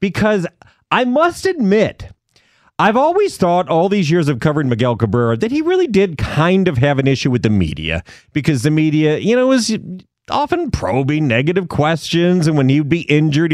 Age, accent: 40-59, American